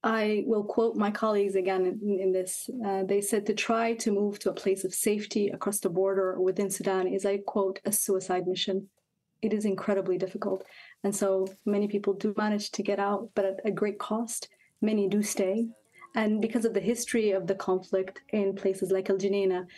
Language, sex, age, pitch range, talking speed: English, female, 30-49, 195-220 Hz, 200 wpm